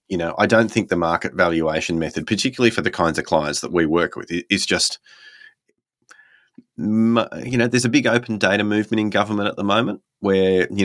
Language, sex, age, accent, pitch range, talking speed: English, male, 30-49, Australian, 85-105 Hz, 200 wpm